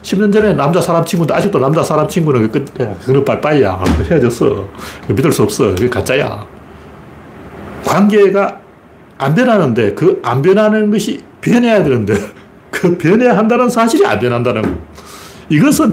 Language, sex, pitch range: Korean, male, 110-180 Hz